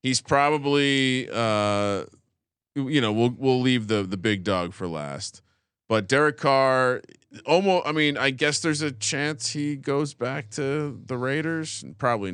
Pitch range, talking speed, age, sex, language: 110-145 Hz, 160 wpm, 30-49, male, English